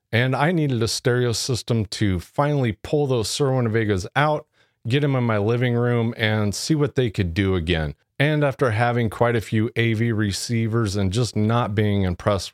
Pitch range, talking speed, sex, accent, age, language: 95-120 Hz, 185 wpm, male, American, 30-49, English